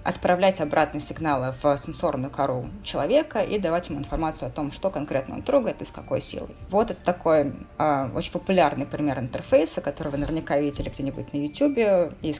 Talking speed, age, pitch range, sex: 180 wpm, 20-39, 150-190 Hz, female